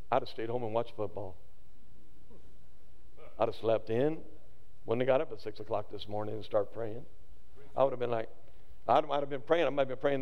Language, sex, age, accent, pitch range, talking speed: English, male, 50-69, American, 110-165 Hz, 225 wpm